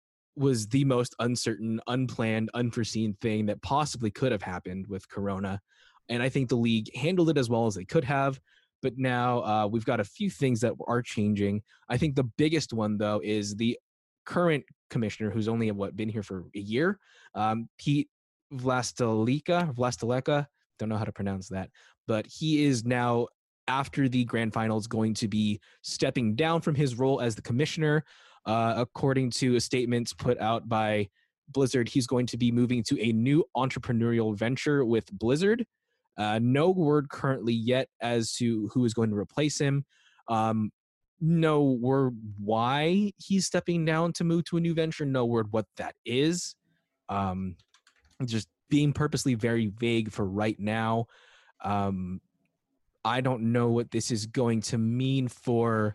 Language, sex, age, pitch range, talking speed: English, male, 20-39, 110-140 Hz, 170 wpm